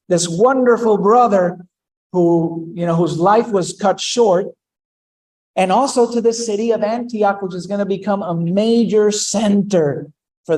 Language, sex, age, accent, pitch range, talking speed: English, male, 50-69, American, 160-215 Hz, 145 wpm